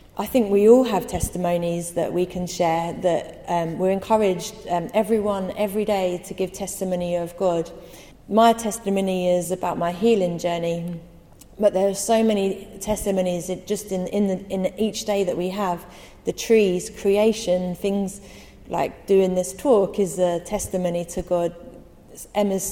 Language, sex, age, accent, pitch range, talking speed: English, female, 30-49, British, 180-210 Hz, 155 wpm